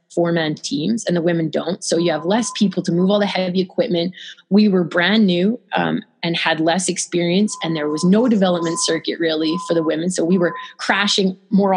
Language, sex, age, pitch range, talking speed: English, female, 20-39, 170-205 Hz, 210 wpm